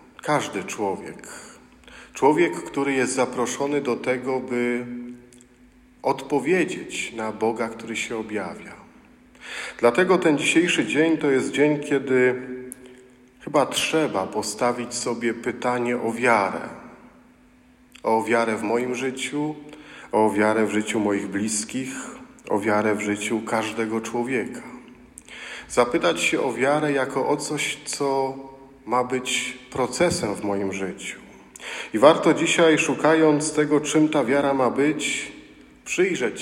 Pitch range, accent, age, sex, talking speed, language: 115-135 Hz, native, 50-69, male, 120 wpm, Polish